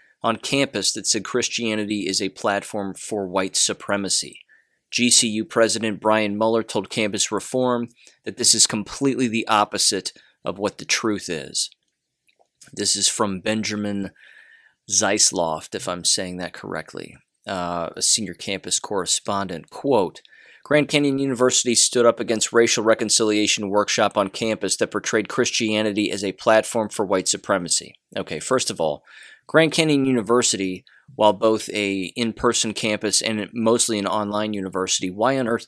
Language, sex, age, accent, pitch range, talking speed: English, male, 20-39, American, 100-115 Hz, 140 wpm